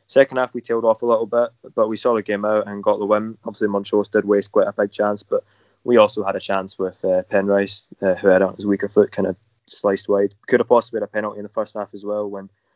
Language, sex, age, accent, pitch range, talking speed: English, male, 20-39, British, 100-110 Hz, 275 wpm